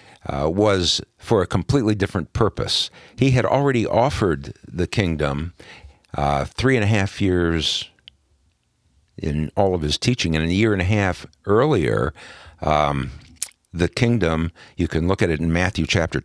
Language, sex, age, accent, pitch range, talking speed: English, male, 60-79, American, 75-95 Hz, 155 wpm